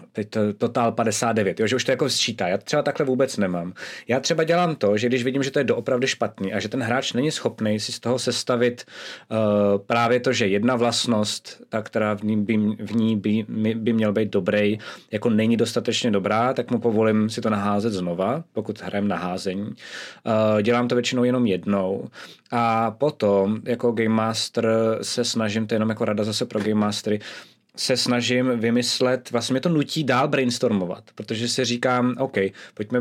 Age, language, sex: 20-39, Czech, male